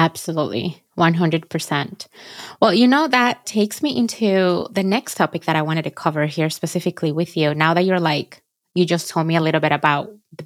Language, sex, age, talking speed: English, female, 20-39, 195 wpm